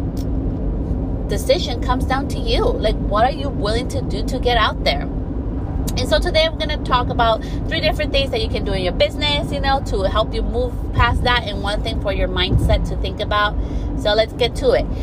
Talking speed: 225 wpm